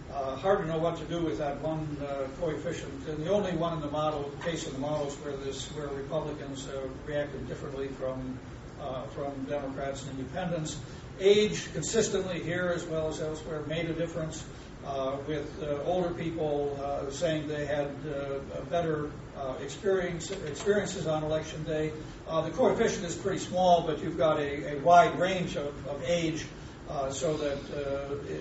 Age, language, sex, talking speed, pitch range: 60-79, English, male, 175 wpm, 135-165 Hz